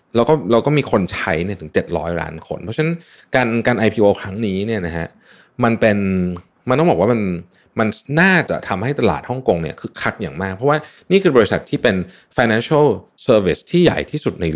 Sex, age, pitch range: male, 20-39, 90-130 Hz